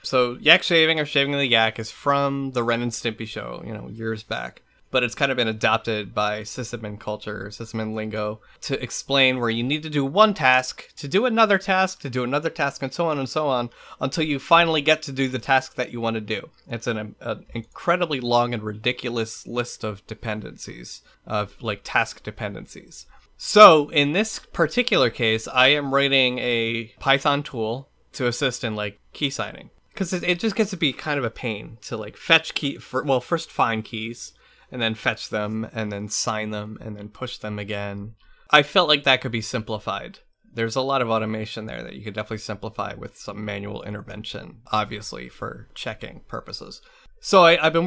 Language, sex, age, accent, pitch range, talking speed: English, male, 20-39, American, 110-145 Hz, 195 wpm